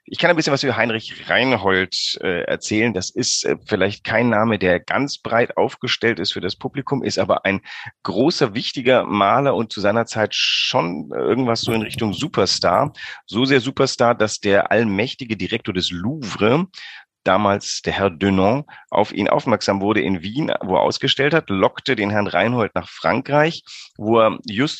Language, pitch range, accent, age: German, 95-130 Hz, German, 40-59